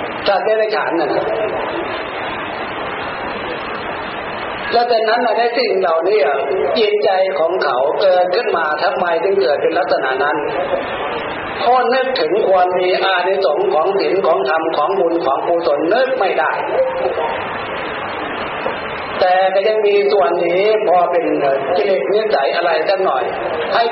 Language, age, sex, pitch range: Thai, 60-79, male, 180-225 Hz